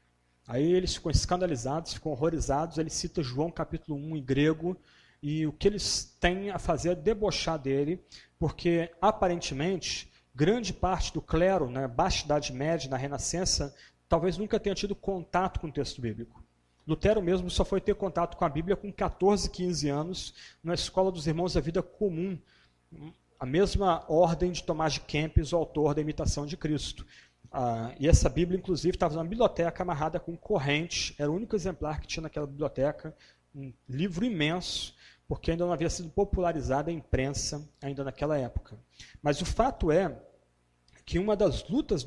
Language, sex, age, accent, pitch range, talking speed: Portuguese, male, 40-59, Brazilian, 145-185 Hz, 170 wpm